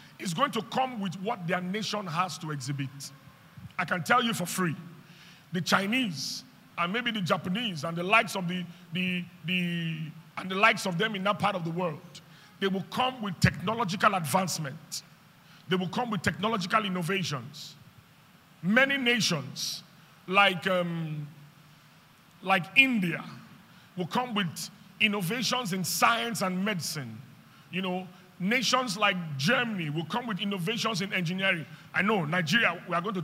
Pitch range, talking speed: 165-220 Hz, 155 wpm